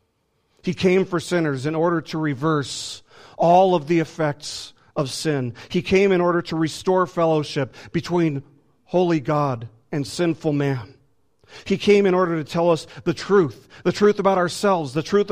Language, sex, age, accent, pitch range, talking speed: English, male, 40-59, American, 125-165 Hz, 165 wpm